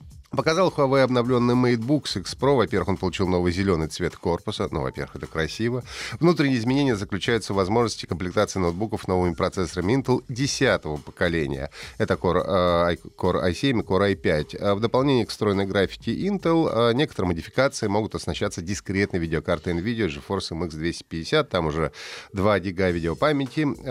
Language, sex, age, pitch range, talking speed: Russian, male, 30-49, 90-120 Hz, 145 wpm